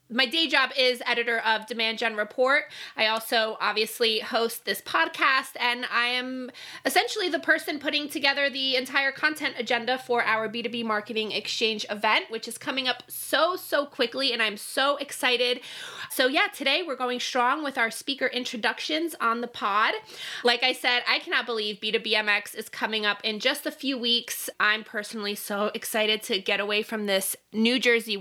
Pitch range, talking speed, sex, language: 225-275 Hz, 175 wpm, female, English